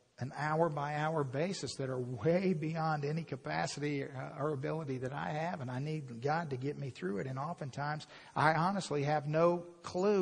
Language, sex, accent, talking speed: English, male, American, 180 wpm